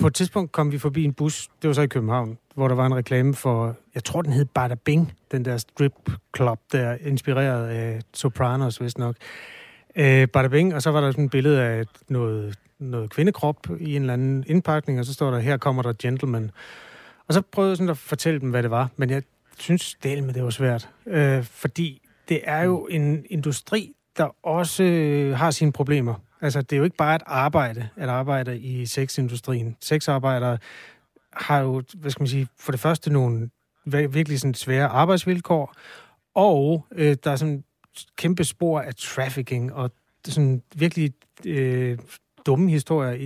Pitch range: 125-155 Hz